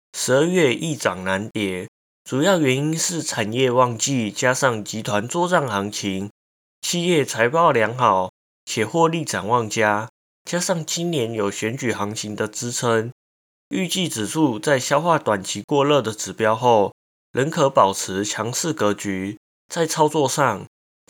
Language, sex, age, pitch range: Chinese, male, 20-39, 100-145 Hz